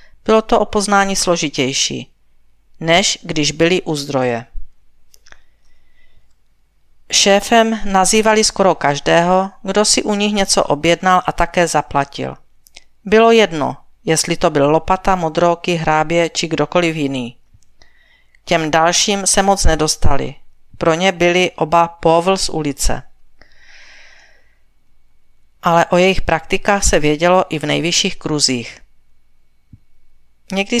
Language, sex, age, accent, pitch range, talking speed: Czech, female, 40-59, native, 155-195 Hz, 110 wpm